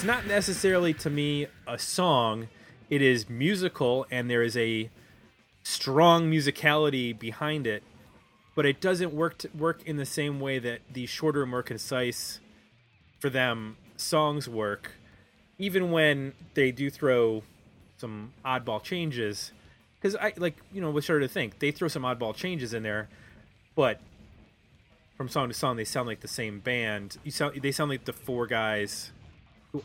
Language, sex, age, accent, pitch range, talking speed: English, male, 30-49, American, 110-150 Hz, 165 wpm